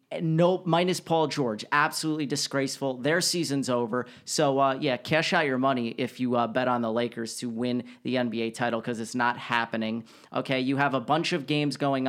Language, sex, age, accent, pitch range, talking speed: English, male, 30-49, American, 125-145 Hz, 205 wpm